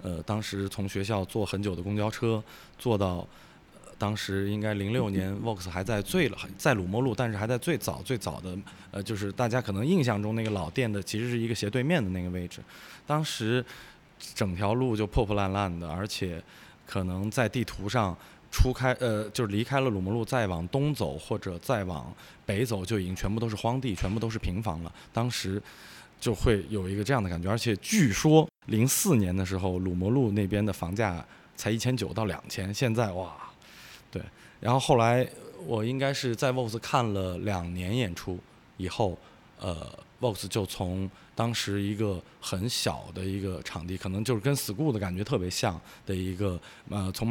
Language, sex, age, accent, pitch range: Chinese, male, 20-39, native, 95-120 Hz